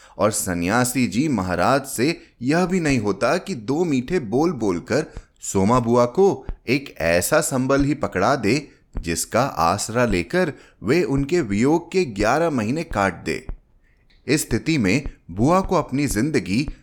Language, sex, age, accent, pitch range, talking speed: Hindi, male, 30-49, native, 95-150 Hz, 145 wpm